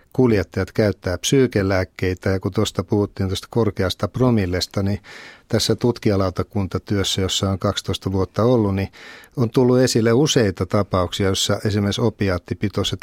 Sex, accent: male, native